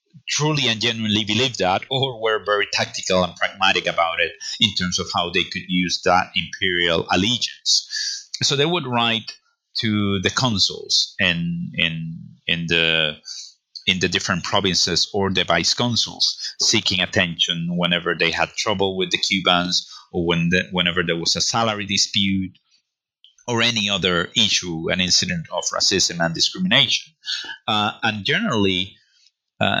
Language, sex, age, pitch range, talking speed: English, male, 30-49, 90-120 Hz, 145 wpm